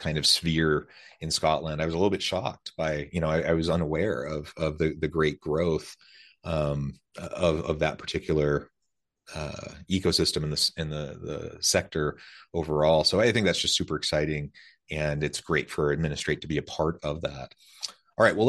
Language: English